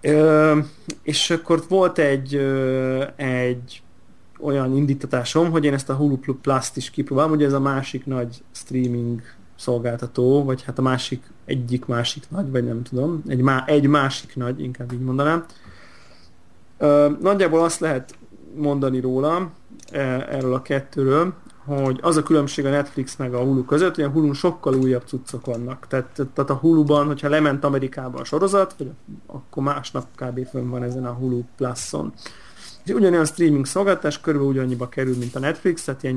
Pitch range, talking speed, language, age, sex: 130-150 Hz, 160 wpm, Hungarian, 30-49, male